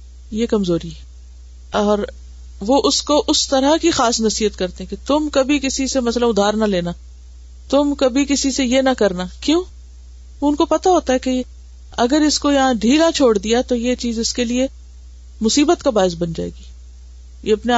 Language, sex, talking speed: Urdu, female, 190 wpm